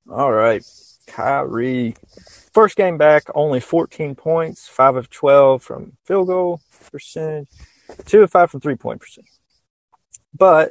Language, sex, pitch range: English, male, 120-145 Hz